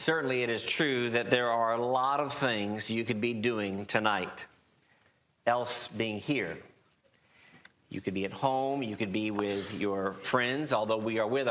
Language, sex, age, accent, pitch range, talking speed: English, male, 50-69, American, 120-150 Hz, 175 wpm